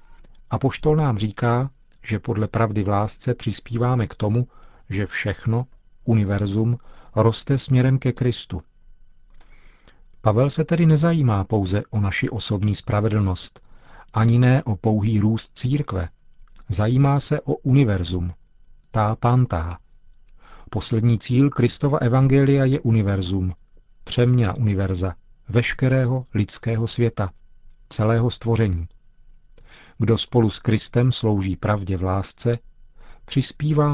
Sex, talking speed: male, 110 wpm